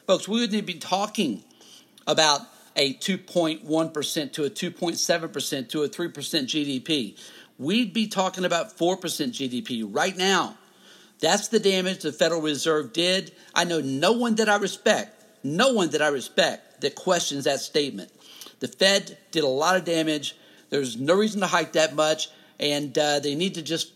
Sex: male